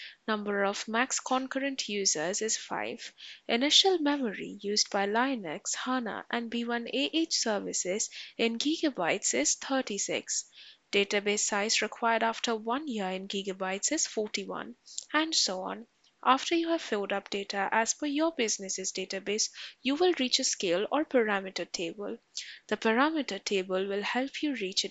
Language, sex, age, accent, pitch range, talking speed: English, female, 10-29, Indian, 200-260 Hz, 145 wpm